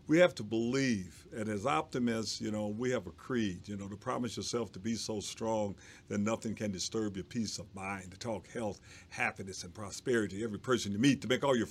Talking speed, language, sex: 225 wpm, English, male